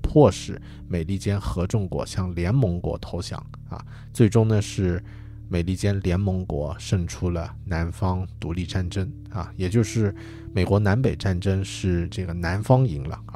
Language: Chinese